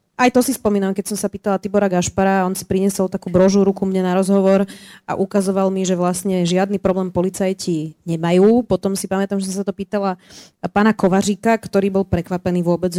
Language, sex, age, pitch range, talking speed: Slovak, female, 30-49, 180-205 Hz, 190 wpm